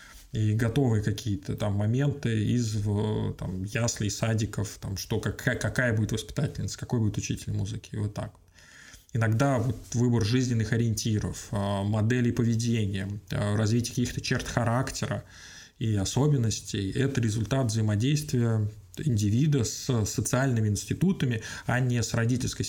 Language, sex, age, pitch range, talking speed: Russian, male, 20-39, 105-125 Hz, 110 wpm